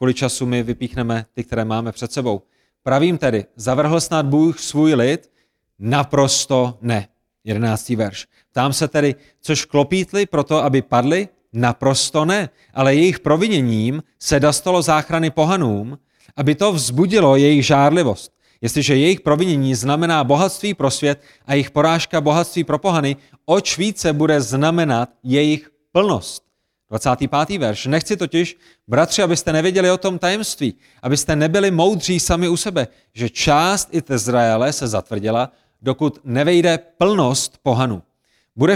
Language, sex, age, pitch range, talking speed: Czech, male, 30-49, 125-165 Hz, 135 wpm